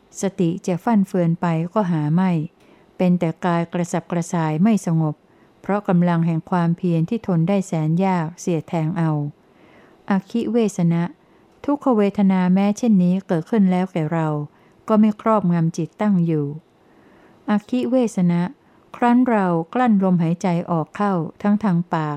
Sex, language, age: female, Thai, 60-79